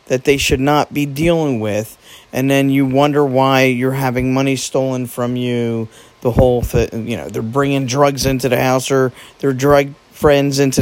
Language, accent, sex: English, American, male